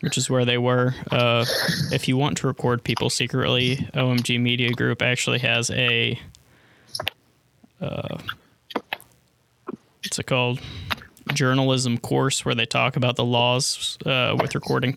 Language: English